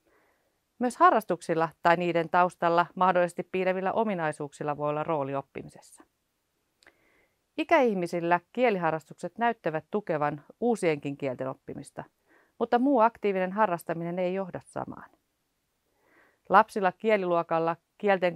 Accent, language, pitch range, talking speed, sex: native, Finnish, 170-215 Hz, 95 wpm, female